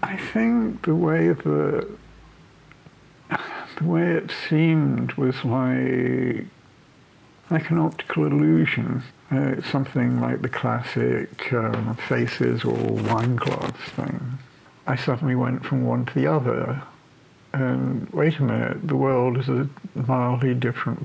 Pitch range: 115-150 Hz